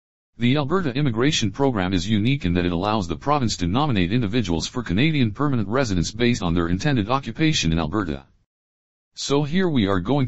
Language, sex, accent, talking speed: English, male, American, 180 wpm